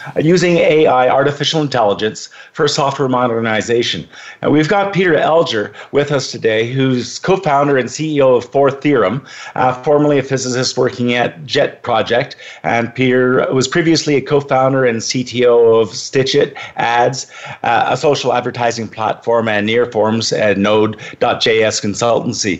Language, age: English, 50-69